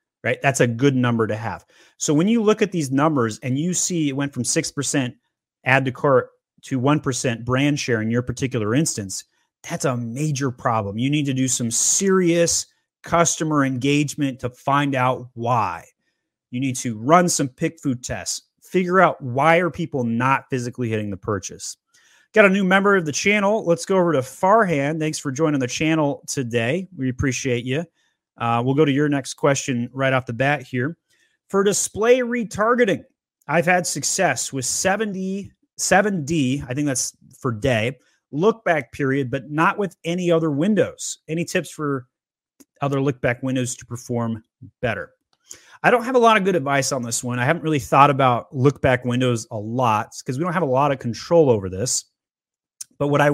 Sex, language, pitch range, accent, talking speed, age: male, English, 125-170 Hz, American, 180 wpm, 30-49